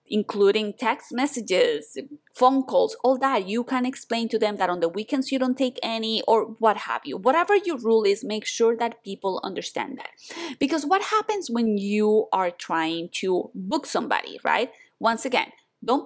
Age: 20-39